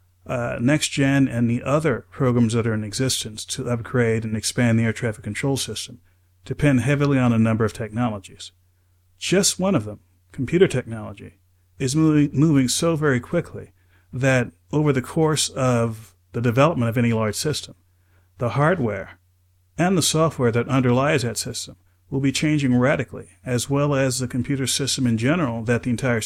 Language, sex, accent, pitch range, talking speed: English, male, American, 105-135 Hz, 165 wpm